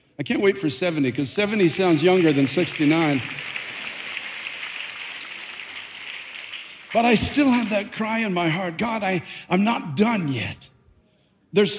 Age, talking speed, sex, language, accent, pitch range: 60-79, 130 wpm, male, English, American, 140-195 Hz